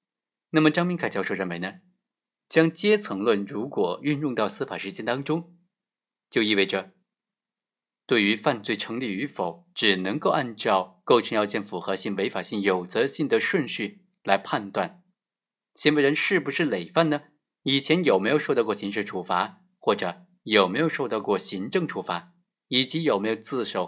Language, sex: Chinese, male